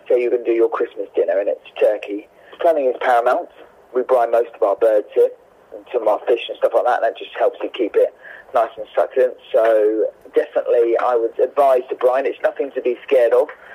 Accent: British